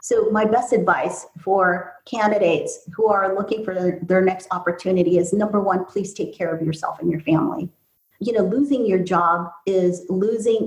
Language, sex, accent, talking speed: English, female, American, 175 wpm